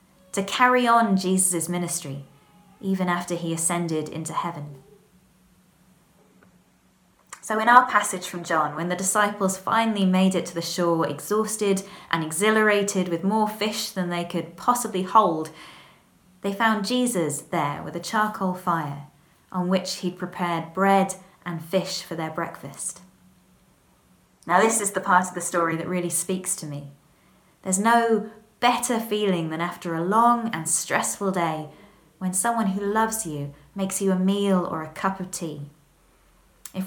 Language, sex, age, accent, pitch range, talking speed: English, female, 20-39, British, 165-200 Hz, 155 wpm